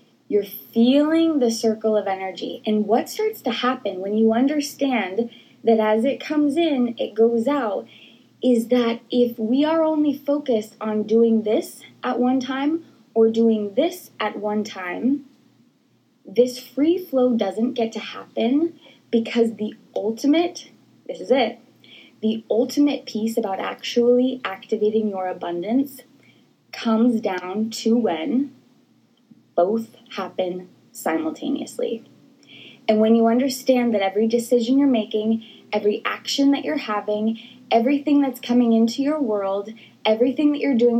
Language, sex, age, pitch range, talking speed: English, female, 20-39, 220-270 Hz, 135 wpm